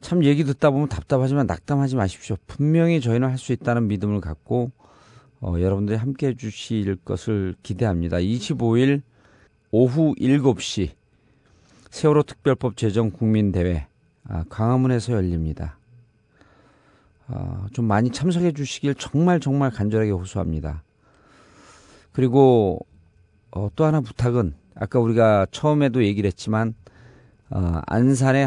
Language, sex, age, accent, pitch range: Korean, male, 40-59, native, 100-135 Hz